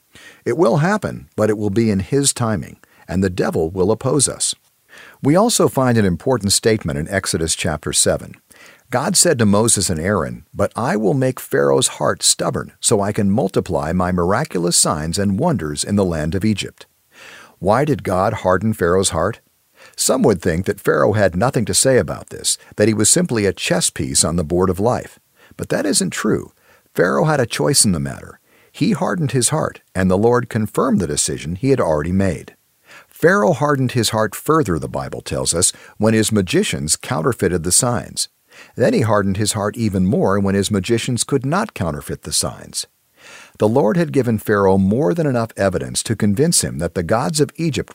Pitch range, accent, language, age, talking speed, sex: 90-120 Hz, American, English, 50-69, 195 wpm, male